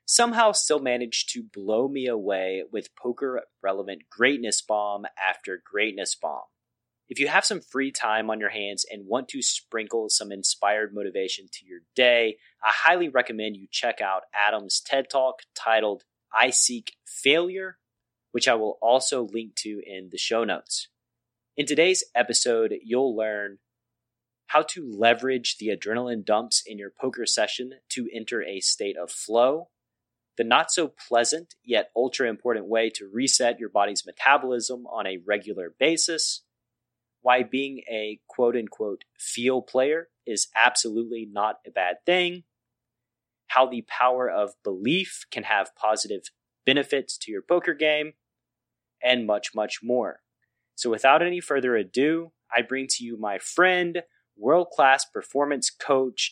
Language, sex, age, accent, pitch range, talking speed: English, male, 30-49, American, 110-145 Hz, 145 wpm